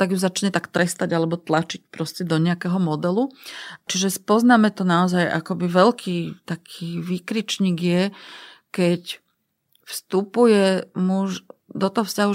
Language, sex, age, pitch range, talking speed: Slovak, female, 30-49, 175-200 Hz, 125 wpm